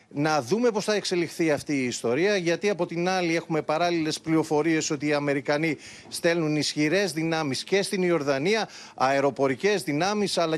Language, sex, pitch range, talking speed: Greek, male, 150-190 Hz, 155 wpm